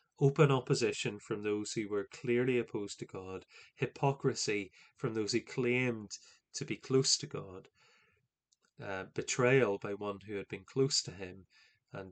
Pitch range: 115-140 Hz